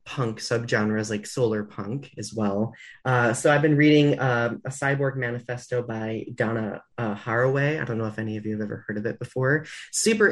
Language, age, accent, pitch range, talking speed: English, 30-49, American, 115-145 Hz, 200 wpm